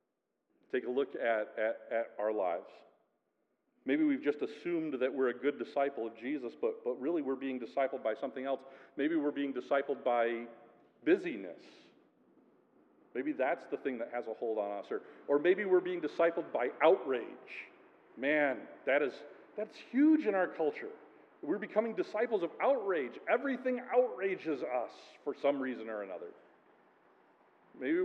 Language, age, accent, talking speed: English, 40-59, American, 150 wpm